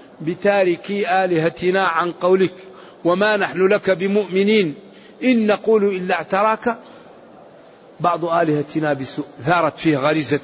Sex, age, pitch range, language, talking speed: male, 50-69, 150-195 Hz, Arabic, 100 wpm